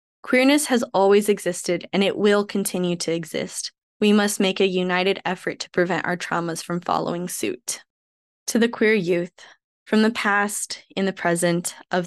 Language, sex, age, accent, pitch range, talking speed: English, female, 10-29, American, 180-220 Hz, 170 wpm